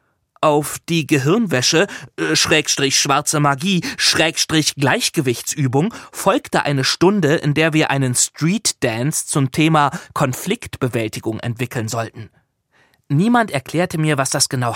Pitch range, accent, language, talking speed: 125-155 Hz, German, German, 120 wpm